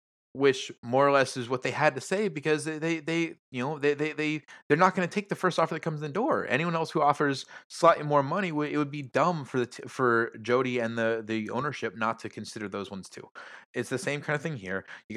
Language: English